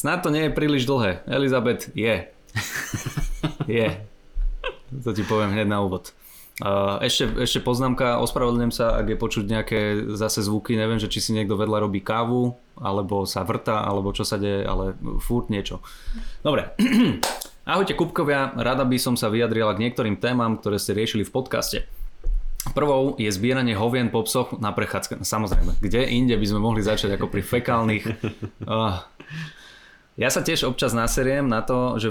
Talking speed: 165 wpm